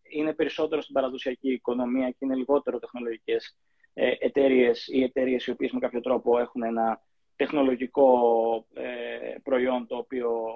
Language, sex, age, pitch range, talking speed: Greek, male, 20-39, 125-165 Hz, 135 wpm